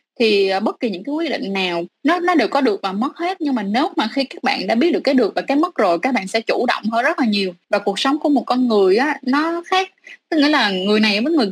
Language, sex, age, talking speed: Vietnamese, female, 20-39, 300 wpm